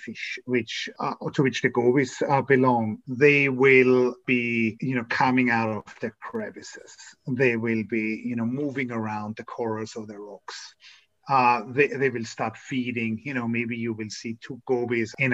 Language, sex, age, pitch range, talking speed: English, male, 30-49, 125-160 Hz, 180 wpm